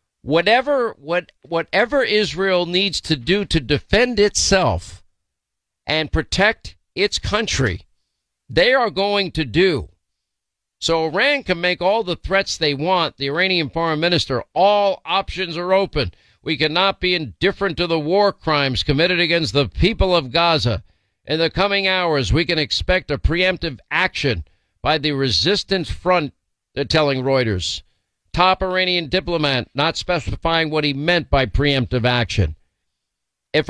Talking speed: 140 wpm